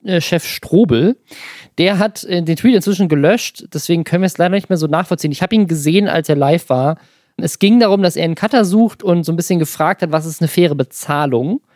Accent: German